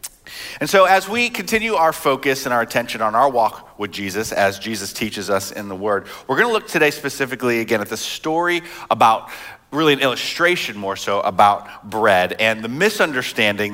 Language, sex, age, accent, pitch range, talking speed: English, male, 30-49, American, 105-155 Hz, 190 wpm